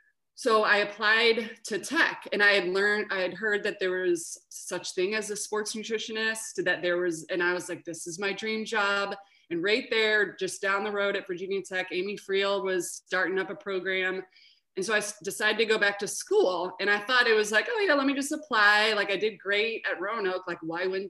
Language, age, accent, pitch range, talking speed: English, 20-39, American, 185-220 Hz, 230 wpm